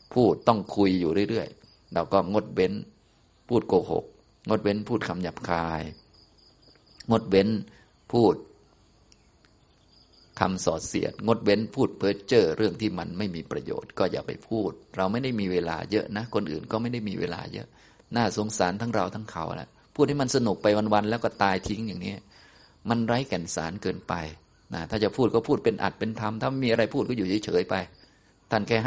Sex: male